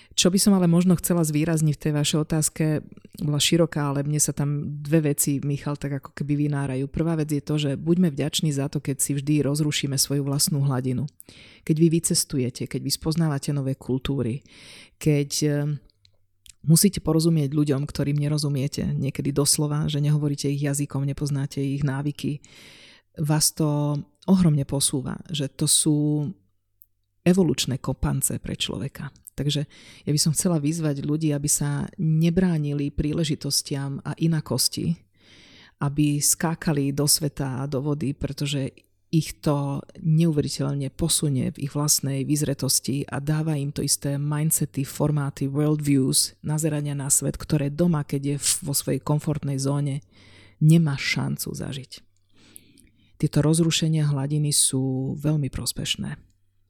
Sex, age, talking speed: female, 30-49, 140 wpm